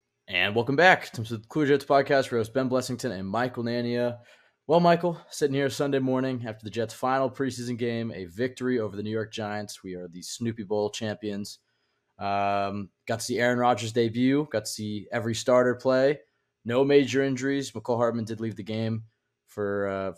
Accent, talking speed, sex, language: American, 195 wpm, male, English